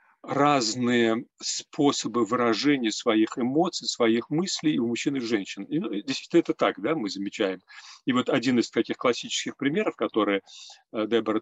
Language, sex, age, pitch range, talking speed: Russian, male, 40-59, 115-175 Hz, 150 wpm